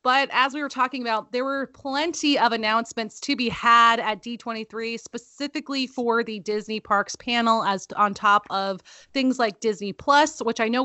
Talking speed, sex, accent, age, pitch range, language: 185 wpm, female, American, 30-49, 205-260 Hz, English